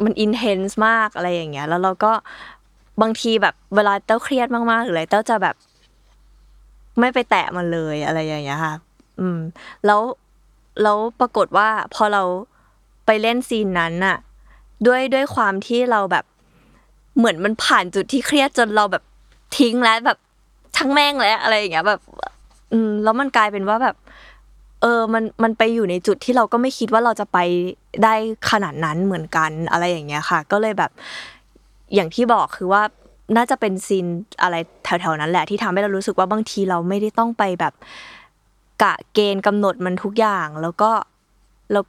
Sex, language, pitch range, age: female, Thai, 175-225 Hz, 20-39